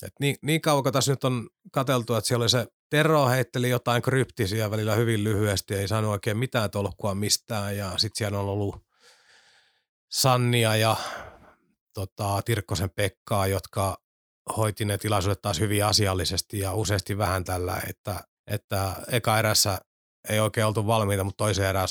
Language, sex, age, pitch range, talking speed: Finnish, male, 30-49, 100-120 Hz, 155 wpm